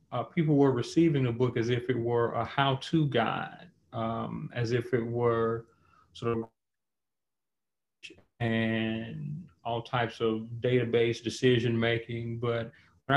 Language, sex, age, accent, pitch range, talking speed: English, male, 30-49, American, 115-130 Hz, 130 wpm